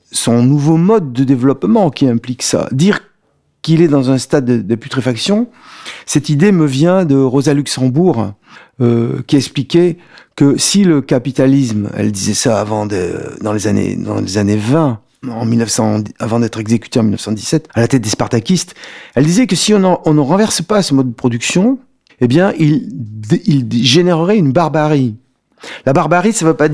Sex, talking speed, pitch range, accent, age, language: male, 180 wpm, 120-170 Hz, French, 50-69, French